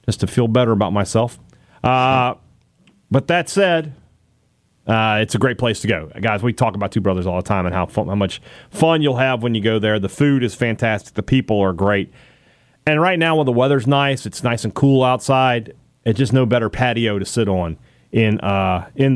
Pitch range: 105-135 Hz